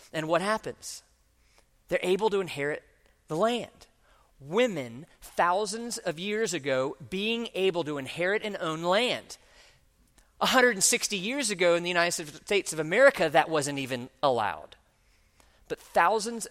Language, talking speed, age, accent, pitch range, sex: English, 130 wpm, 40-59, American, 135-190 Hz, male